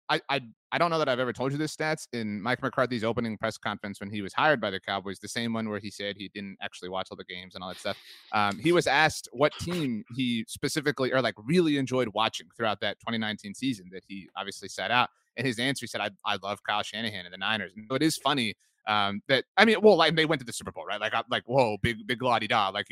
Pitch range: 100-135 Hz